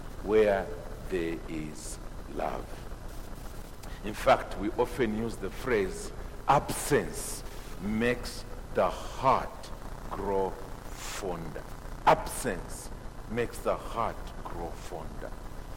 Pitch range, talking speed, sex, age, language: 100-130 Hz, 90 wpm, male, 50-69, English